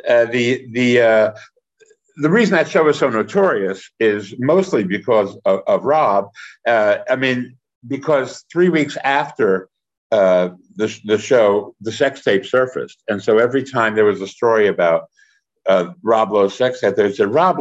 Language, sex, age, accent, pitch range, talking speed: English, male, 60-79, American, 110-155 Hz, 165 wpm